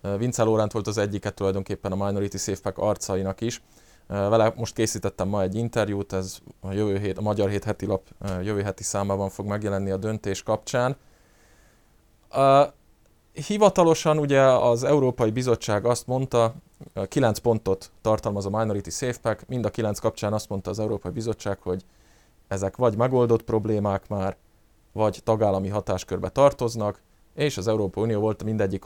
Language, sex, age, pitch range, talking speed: Hungarian, male, 20-39, 100-125 Hz, 150 wpm